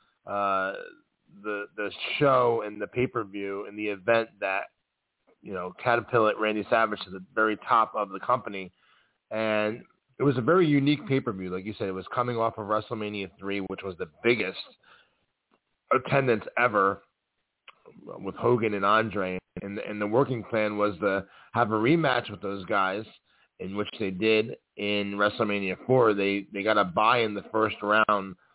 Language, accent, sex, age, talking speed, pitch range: English, American, male, 30-49, 165 wpm, 100-110 Hz